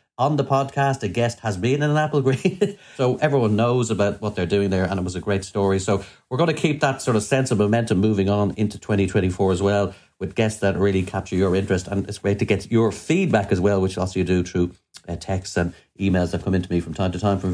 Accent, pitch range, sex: Irish, 100-130 Hz, male